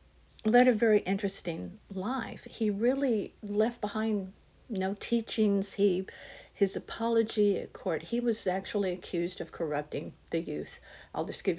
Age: 50-69